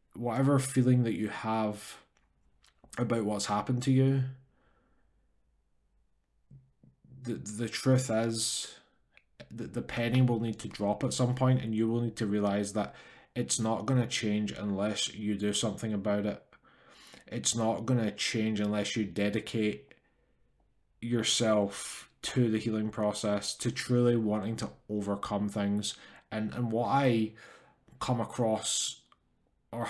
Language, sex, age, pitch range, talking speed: English, male, 20-39, 105-120 Hz, 135 wpm